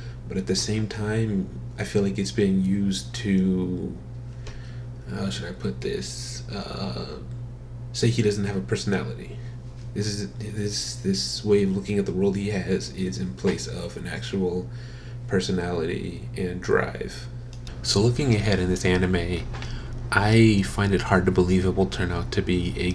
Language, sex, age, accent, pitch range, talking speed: English, male, 30-49, American, 90-115 Hz, 165 wpm